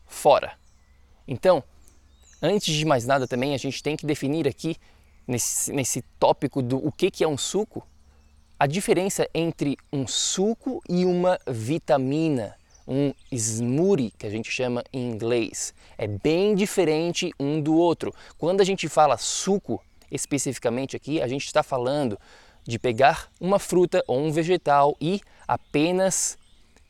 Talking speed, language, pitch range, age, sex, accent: 145 wpm, Portuguese, 120-155 Hz, 20-39, male, Brazilian